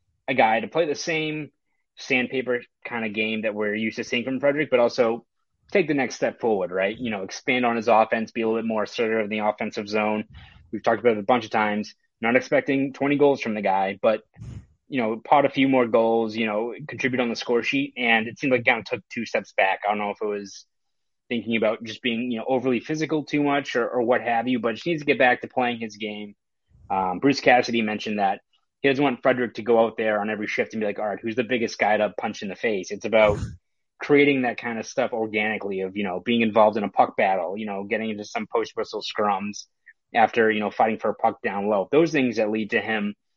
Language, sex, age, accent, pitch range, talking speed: English, male, 20-39, American, 105-125 Hz, 255 wpm